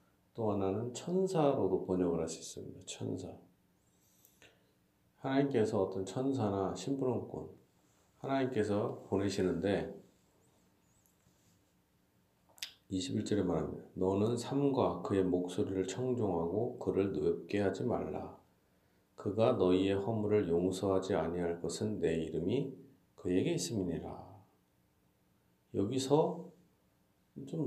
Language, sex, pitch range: Korean, male, 90-125 Hz